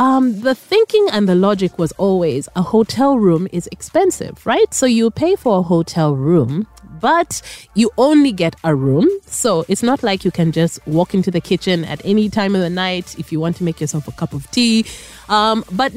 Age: 30-49